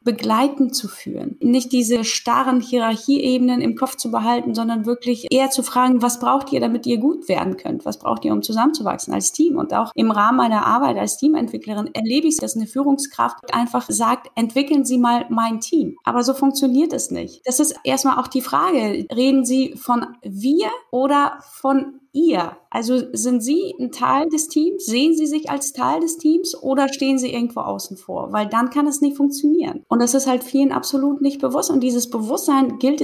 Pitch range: 235-285 Hz